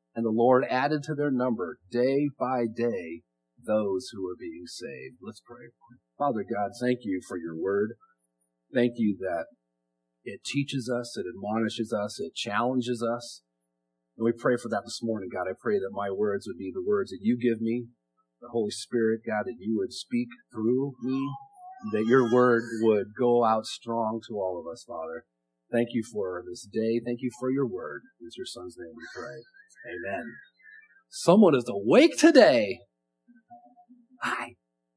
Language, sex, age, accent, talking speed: English, male, 40-59, American, 175 wpm